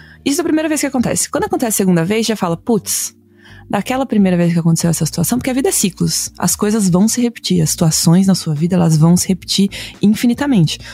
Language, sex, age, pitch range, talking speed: Portuguese, female, 20-39, 170-240 Hz, 230 wpm